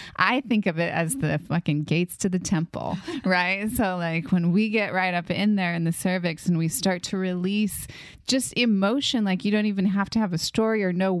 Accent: American